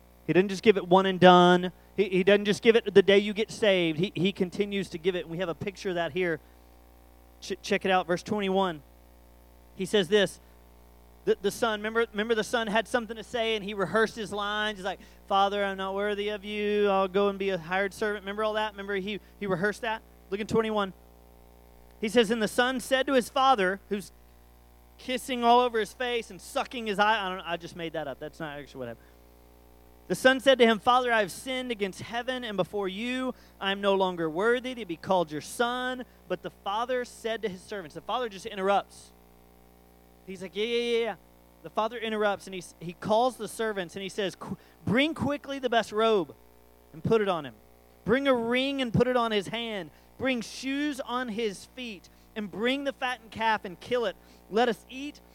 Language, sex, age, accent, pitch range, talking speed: English, male, 30-49, American, 170-230 Hz, 220 wpm